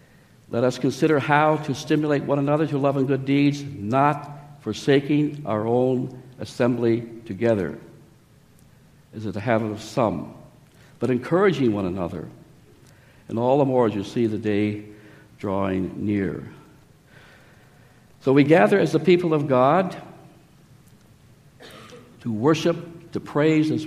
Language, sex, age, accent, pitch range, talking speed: English, male, 60-79, American, 120-150 Hz, 130 wpm